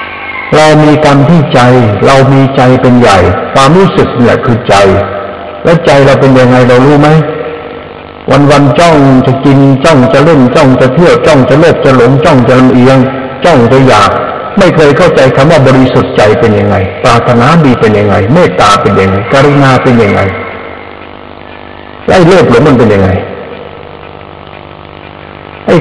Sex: male